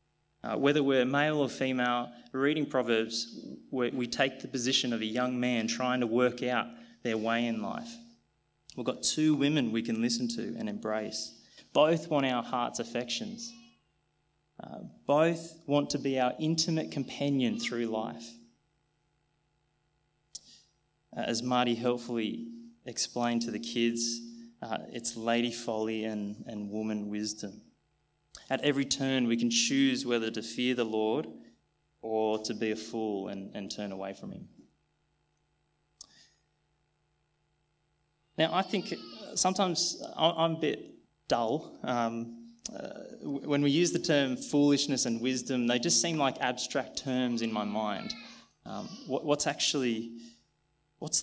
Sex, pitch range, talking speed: male, 115-150 Hz, 140 wpm